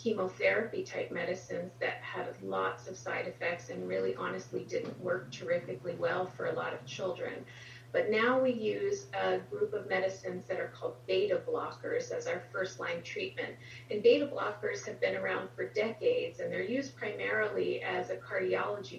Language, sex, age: English, female, 30-49